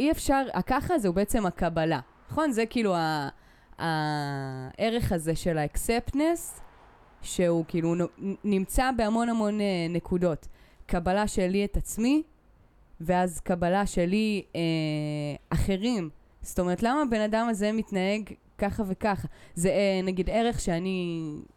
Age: 20-39